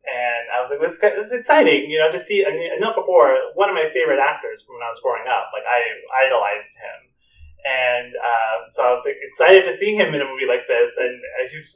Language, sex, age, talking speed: English, male, 30-49, 255 wpm